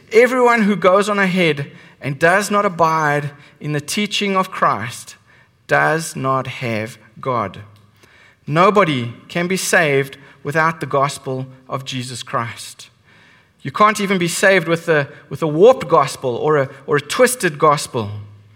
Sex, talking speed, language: male, 145 wpm, English